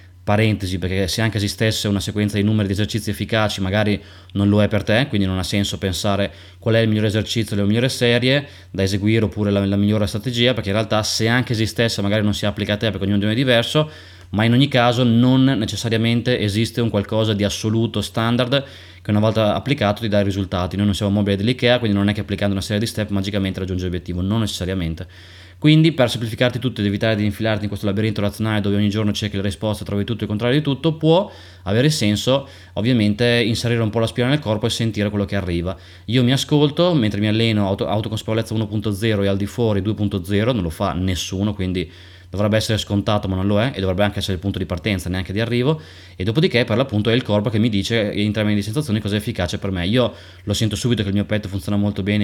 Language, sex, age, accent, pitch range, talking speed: Italian, male, 20-39, native, 100-115 Hz, 230 wpm